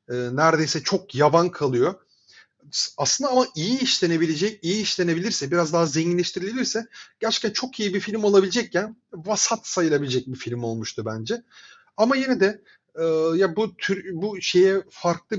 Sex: male